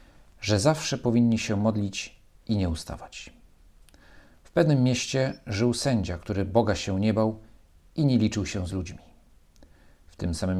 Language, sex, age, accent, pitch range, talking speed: Polish, male, 40-59, native, 80-120 Hz, 155 wpm